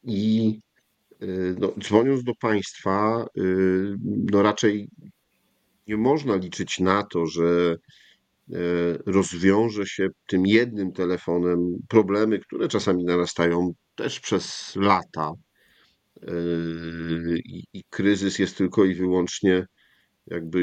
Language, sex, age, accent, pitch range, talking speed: Polish, male, 50-69, native, 90-100 Hz, 95 wpm